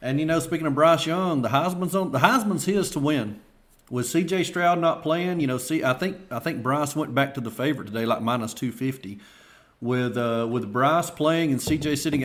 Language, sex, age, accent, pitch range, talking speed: English, male, 40-59, American, 120-150 Hz, 225 wpm